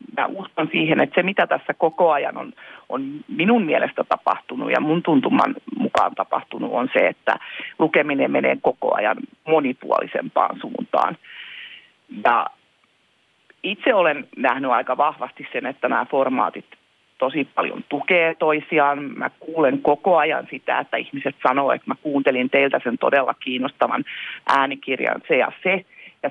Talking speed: 140 wpm